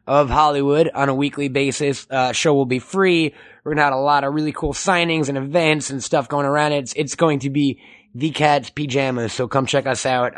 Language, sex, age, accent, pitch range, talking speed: English, male, 20-39, American, 135-170 Hz, 225 wpm